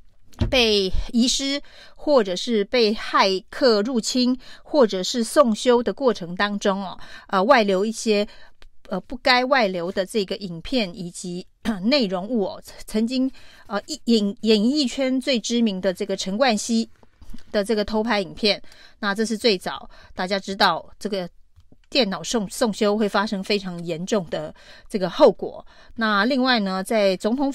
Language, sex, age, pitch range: Chinese, female, 30-49, 190-240 Hz